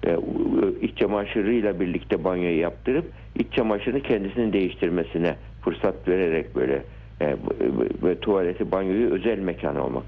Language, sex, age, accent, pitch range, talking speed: Turkish, male, 60-79, native, 90-110 Hz, 125 wpm